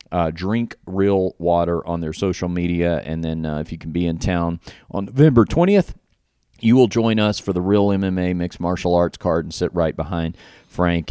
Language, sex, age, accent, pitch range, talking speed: English, male, 40-59, American, 90-120 Hz, 200 wpm